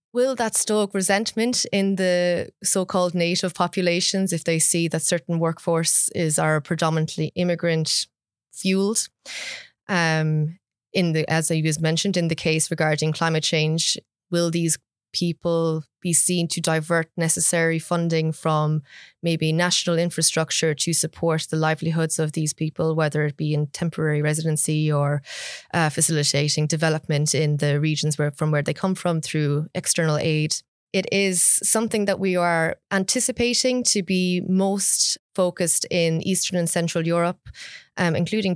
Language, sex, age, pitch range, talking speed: English, female, 20-39, 155-180 Hz, 145 wpm